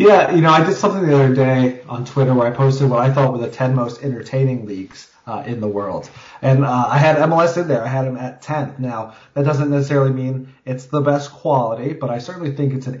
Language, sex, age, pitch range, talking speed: English, male, 30-49, 120-140 Hz, 250 wpm